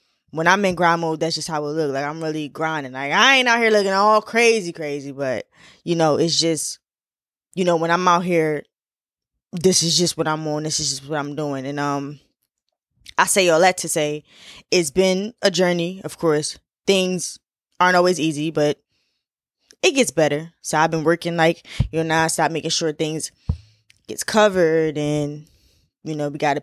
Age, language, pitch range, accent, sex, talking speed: 10-29, English, 155-185 Hz, American, female, 200 wpm